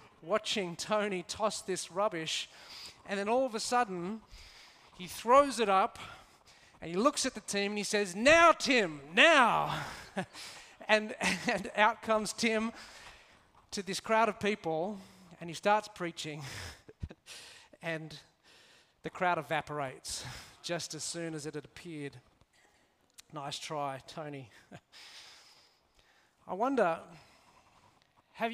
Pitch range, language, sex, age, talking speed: 155-220 Hz, English, male, 30-49, 120 wpm